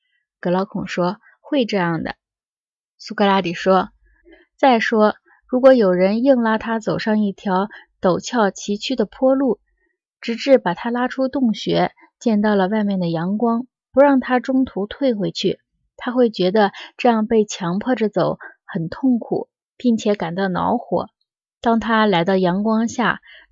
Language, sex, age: Chinese, female, 20-39